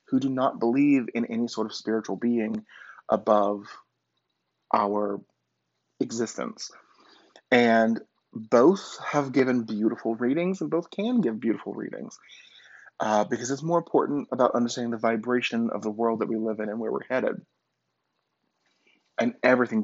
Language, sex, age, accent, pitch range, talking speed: English, male, 30-49, American, 110-140 Hz, 140 wpm